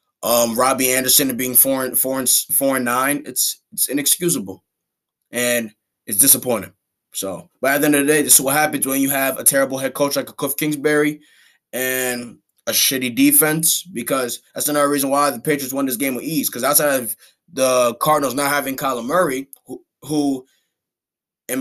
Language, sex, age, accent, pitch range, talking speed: English, male, 20-39, American, 125-150 Hz, 190 wpm